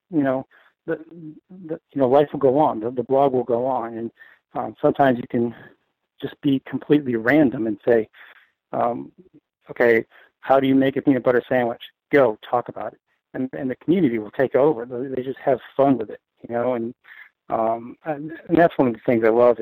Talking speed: 205 wpm